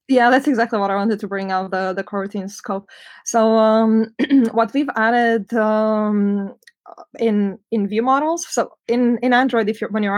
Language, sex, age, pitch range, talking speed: English, female, 20-39, 200-230 Hz, 190 wpm